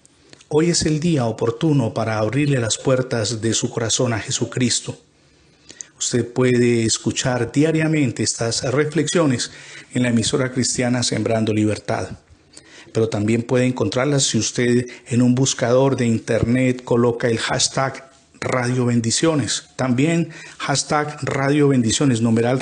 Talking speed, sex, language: 125 wpm, male, Spanish